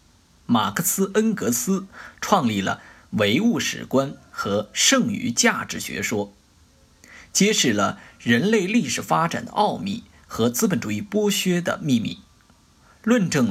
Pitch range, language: 160-230 Hz, Chinese